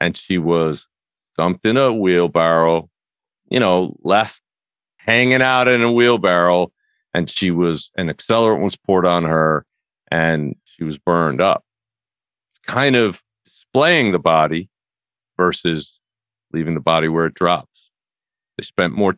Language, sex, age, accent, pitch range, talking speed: English, male, 50-69, American, 80-110 Hz, 140 wpm